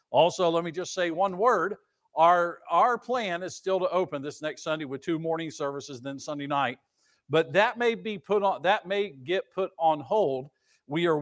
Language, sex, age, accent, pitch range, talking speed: English, male, 50-69, American, 145-190 Hz, 205 wpm